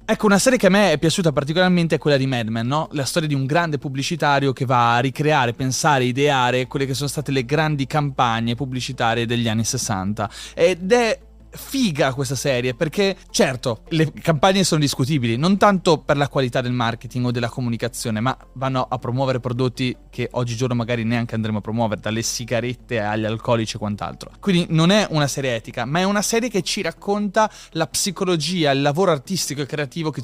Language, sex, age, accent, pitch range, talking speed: Italian, male, 20-39, native, 125-175 Hz, 195 wpm